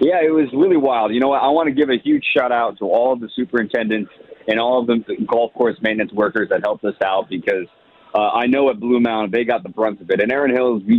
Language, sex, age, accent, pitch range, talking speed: English, male, 30-49, American, 105-120 Hz, 270 wpm